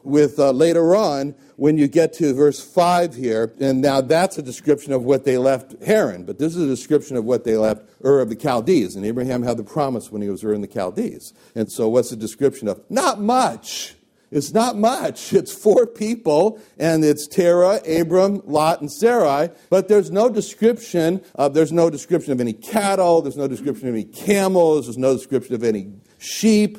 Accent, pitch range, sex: American, 135-200 Hz, male